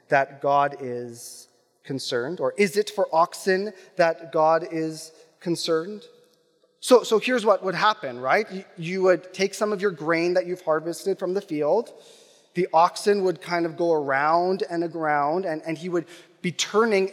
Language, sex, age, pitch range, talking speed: English, male, 30-49, 175-240 Hz, 170 wpm